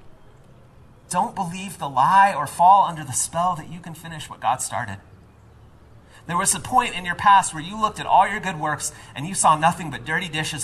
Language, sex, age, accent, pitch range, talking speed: English, male, 30-49, American, 125-190 Hz, 215 wpm